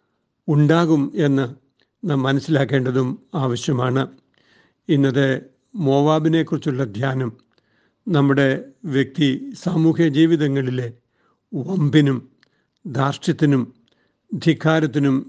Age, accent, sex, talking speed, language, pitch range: 60-79, native, male, 60 wpm, Malayalam, 140-215 Hz